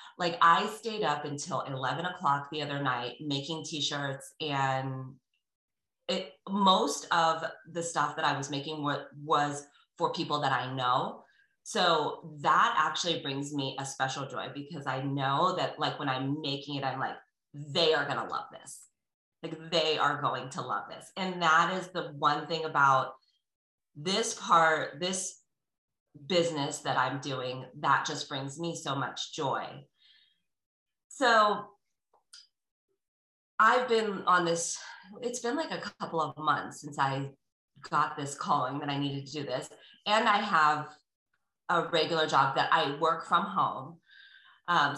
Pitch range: 140-175 Hz